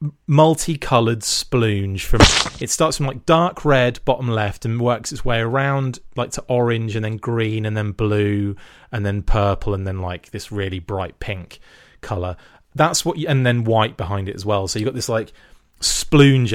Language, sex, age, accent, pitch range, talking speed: English, male, 30-49, British, 100-130 Hz, 185 wpm